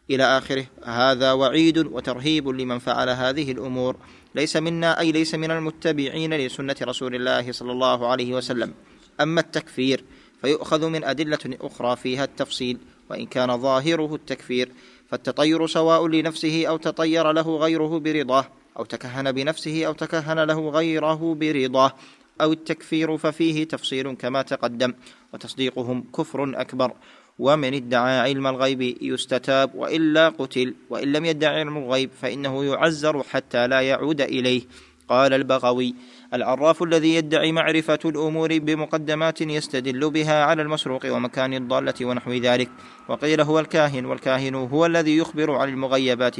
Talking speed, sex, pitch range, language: 130 wpm, male, 130-160 Hz, Arabic